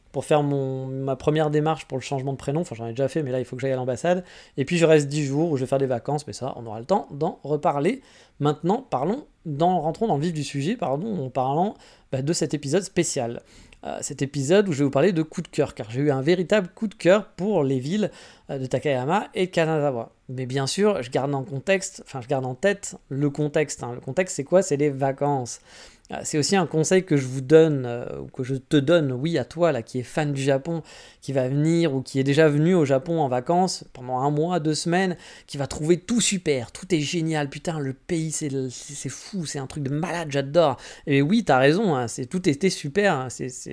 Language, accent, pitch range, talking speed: French, French, 135-175 Hz, 245 wpm